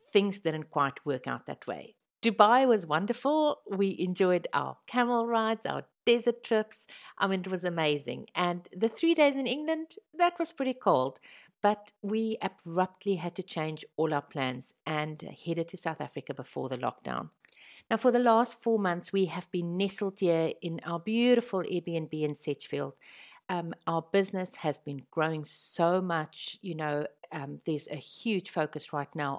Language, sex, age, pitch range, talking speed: English, female, 50-69, 150-220 Hz, 170 wpm